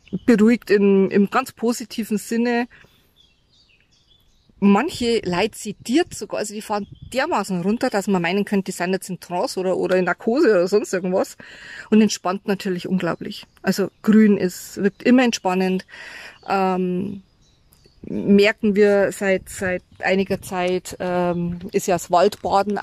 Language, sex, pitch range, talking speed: German, female, 190-235 Hz, 140 wpm